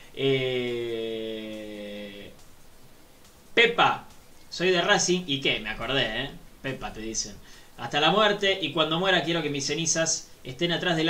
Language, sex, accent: Spanish, male, Argentinian